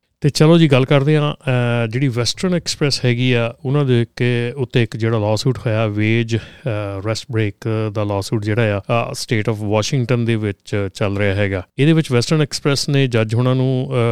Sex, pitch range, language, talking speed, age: male, 110-135 Hz, Punjabi, 185 wpm, 30-49